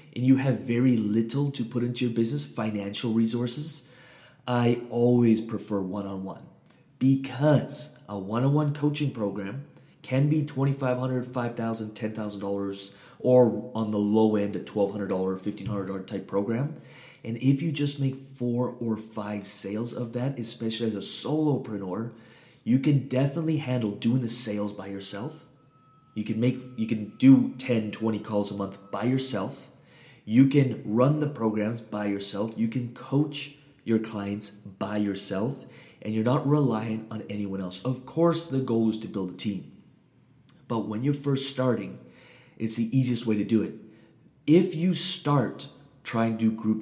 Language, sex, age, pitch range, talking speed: English, male, 20-39, 105-135 Hz, 155 wpm